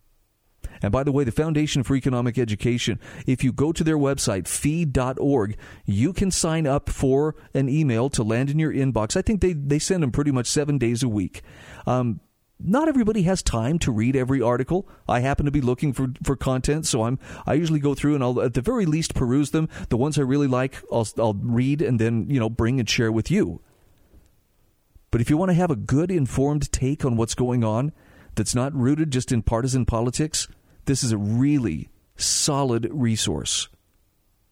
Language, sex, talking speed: English, male, 200 wpm